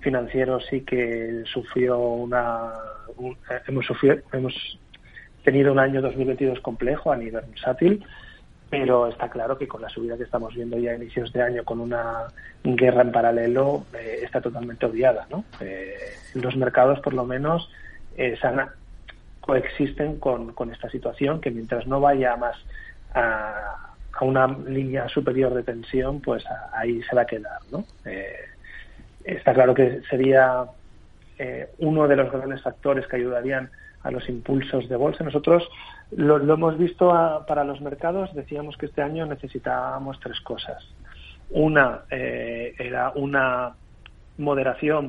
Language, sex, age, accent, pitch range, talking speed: Spanish, male, 30-49, Spanish, 115-140 Hz, 150 wpm